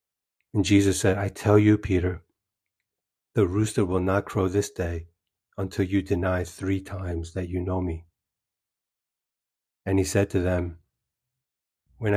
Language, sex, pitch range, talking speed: English, male, 90-105 Hz, 145 wpm